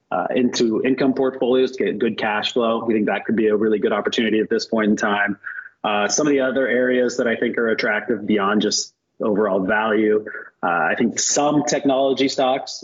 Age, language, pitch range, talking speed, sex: 30-49, English, 120-140 Hz, 205 wpm, male